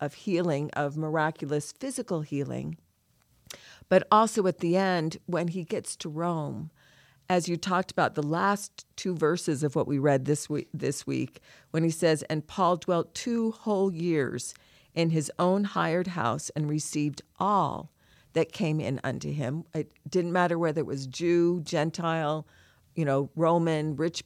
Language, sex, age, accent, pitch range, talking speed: English, female, 50-69, American, 150-180 Hz, 160 wpm